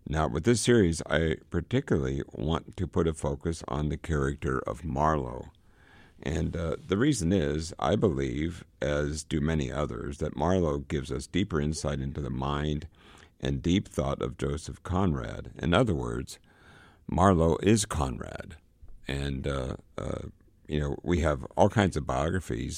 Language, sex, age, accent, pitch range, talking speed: English, male, 60-79, American, 70-85 Hz, 155 wpm